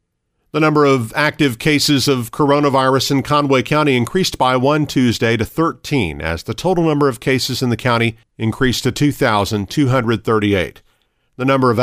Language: English